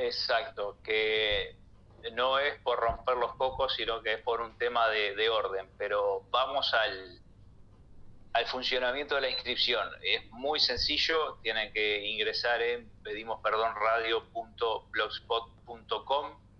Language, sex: Spanish, male